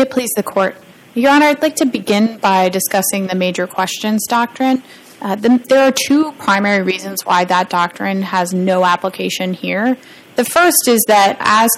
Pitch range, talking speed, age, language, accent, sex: 185-225 Hz, 175 wpm, 20-39, English, American, female